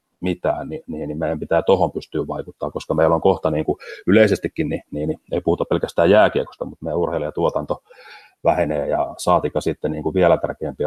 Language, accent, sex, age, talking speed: Finnish, native, male, 30-49, 175 wpm